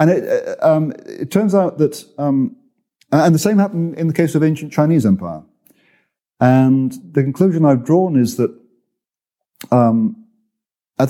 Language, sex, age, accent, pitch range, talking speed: English, male, 40-59, British, 110-165 Hz, 150 wpm